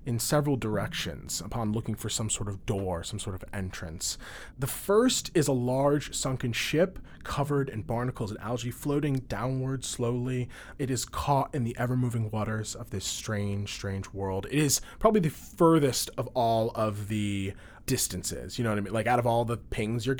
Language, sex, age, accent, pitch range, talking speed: English, male, 30-49, American, 105-135 Hz, 185 wpm